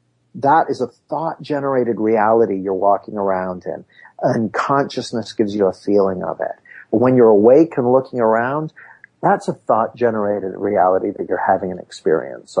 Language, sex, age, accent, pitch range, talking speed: English, male, 50-69, American, 105-145 Hz, 150 wpm